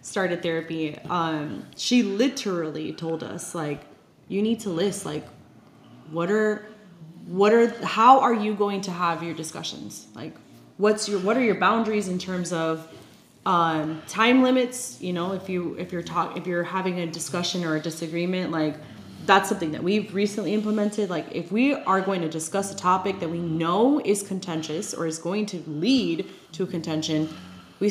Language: English